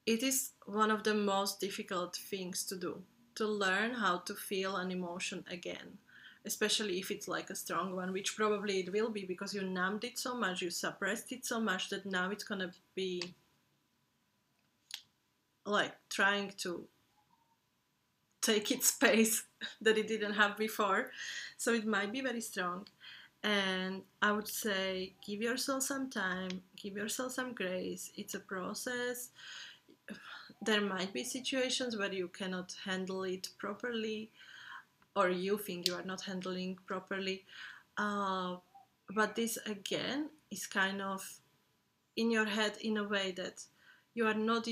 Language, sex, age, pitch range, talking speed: English, female, 30-49, 190-220 Hz, 150 wpm